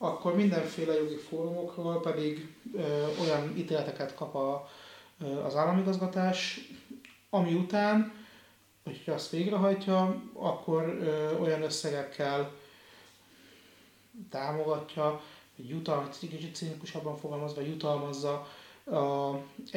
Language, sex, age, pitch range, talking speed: Hungarian, male, 30-49, 145-185 Hz, 90 wpm